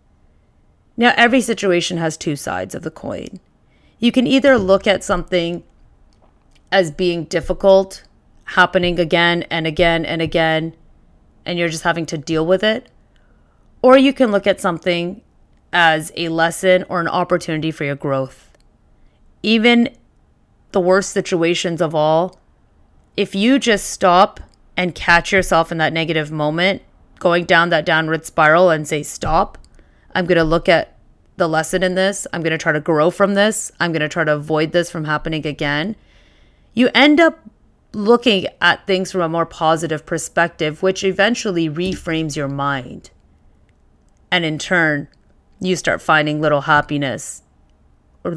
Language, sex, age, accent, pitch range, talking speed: English, female, 30-49, American, 155-190 Hz, 155 wpm